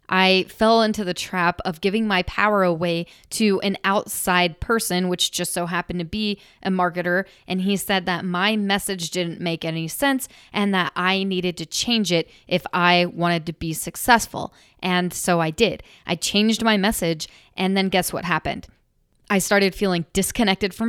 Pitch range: 175-200 Hz